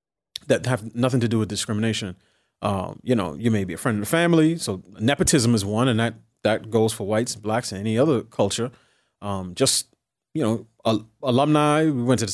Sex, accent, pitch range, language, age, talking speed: male, American, 110-145 Hz, English, 30-49, 210 wpm